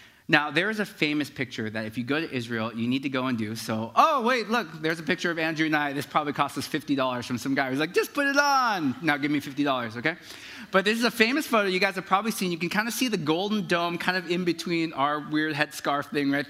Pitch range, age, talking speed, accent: 140-215 Hz, 30-49, 275 wpm, American